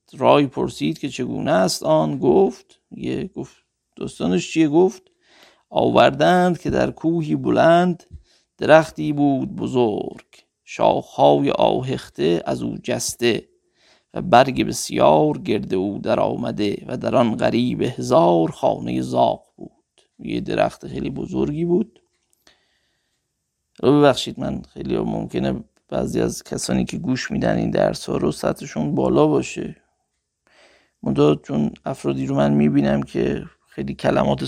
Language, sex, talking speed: Persian, male, 120 wpm